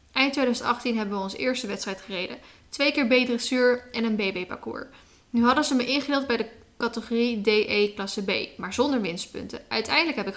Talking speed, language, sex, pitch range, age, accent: 185 wpm, Dutch, female, 205-250 Hz, 10-29, Dutch